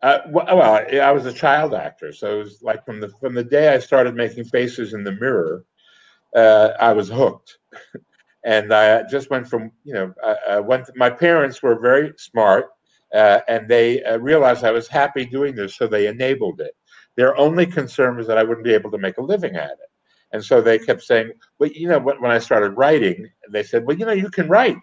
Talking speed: 220 wpm